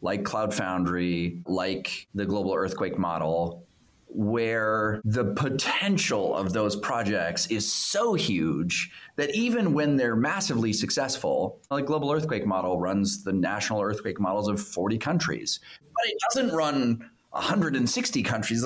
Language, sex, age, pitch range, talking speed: English, male, 30-49, 100-150 Hz, 130 wpm